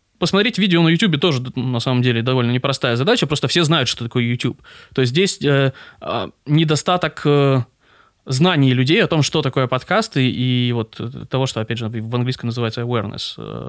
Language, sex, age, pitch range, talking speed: Russian, male, 20-39, 115-135 Hz, 175 wpm